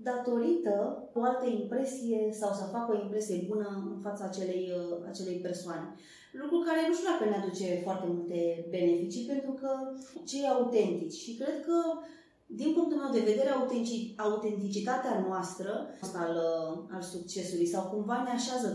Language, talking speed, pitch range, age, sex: Romanian, 145 wpm, 195-280 Hz, 20-39, female